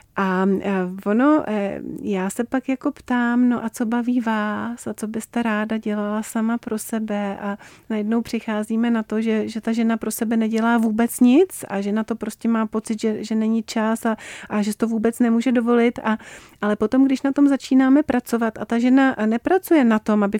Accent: native